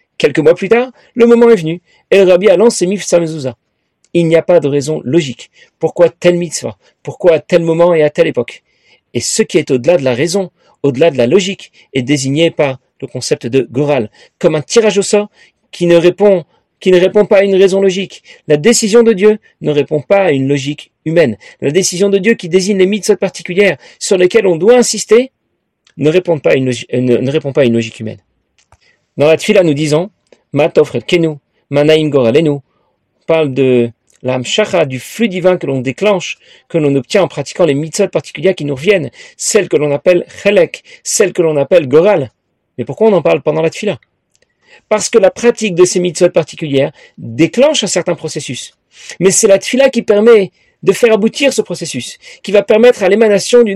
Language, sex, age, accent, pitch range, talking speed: French, male, 40-59, French, 150-205 Hz, 200 wpm